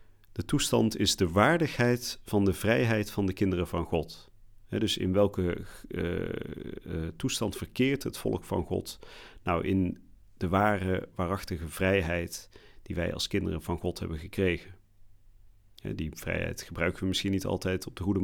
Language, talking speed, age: Dutch, 150 wpm, 40-59